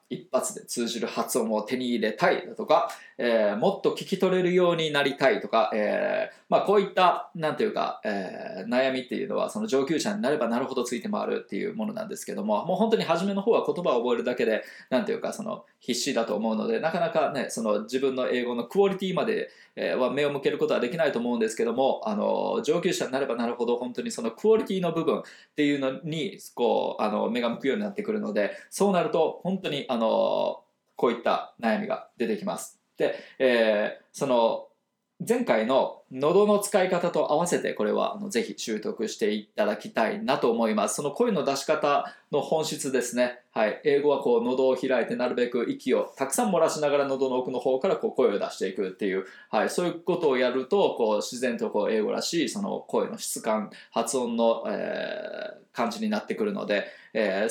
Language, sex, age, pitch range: Japanese, male, 20-39, 125-210 Hz